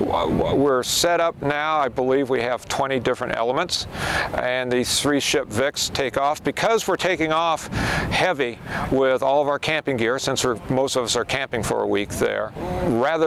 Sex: male